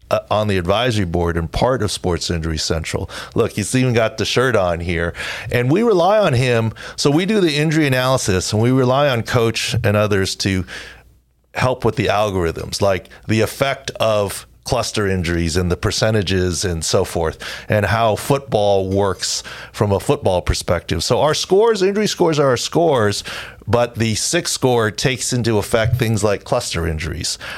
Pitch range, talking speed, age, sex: 95-125 Hz, 175 wpm, 40-59, male